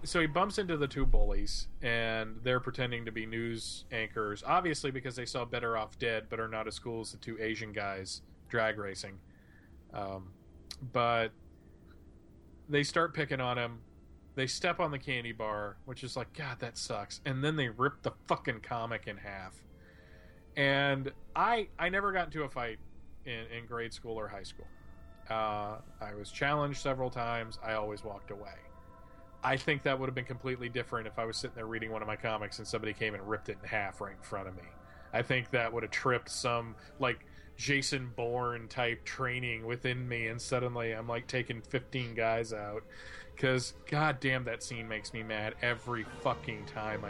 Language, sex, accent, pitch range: English, male, American, 105-130 Hz